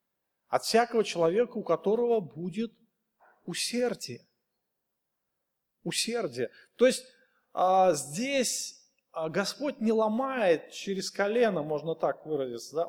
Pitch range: 195-260 Hz